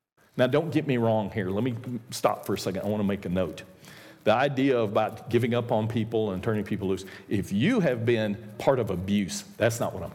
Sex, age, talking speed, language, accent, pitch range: male, 50-69, 235 wpm, English, American, 105-135 Hz